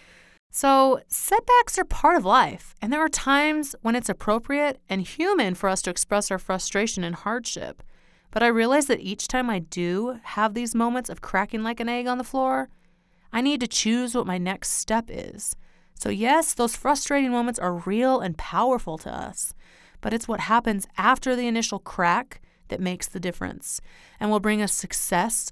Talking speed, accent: 185 wpm, American